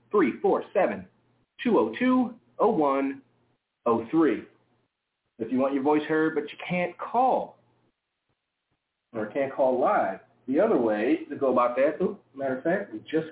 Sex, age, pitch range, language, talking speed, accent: male, 30-49, 125-160 Hz, English, 130 wpm, American